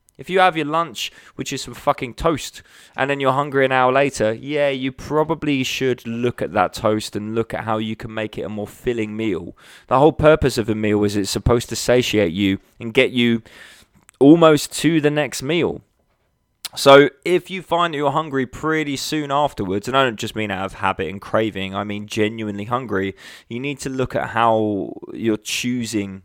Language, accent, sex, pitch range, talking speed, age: English, British, male, 110-140 Hz, 205 wpm, 20-39